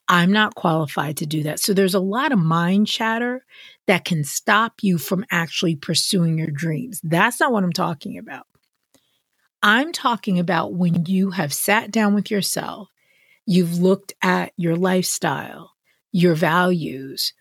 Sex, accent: female, American